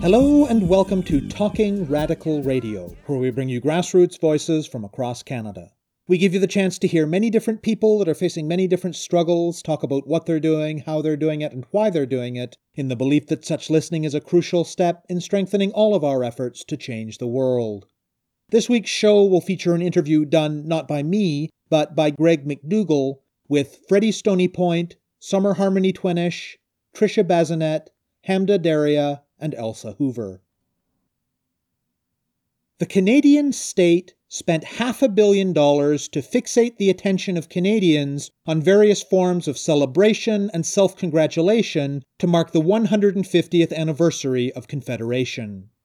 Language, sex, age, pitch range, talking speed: English, male, 40-59, 150-200 Hz, 160 wpm